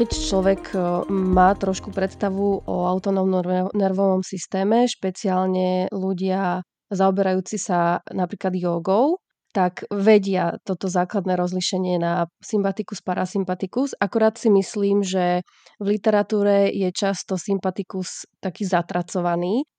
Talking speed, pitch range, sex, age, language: 105 wpm, 180-200 Hz, female, 20-39, Slovak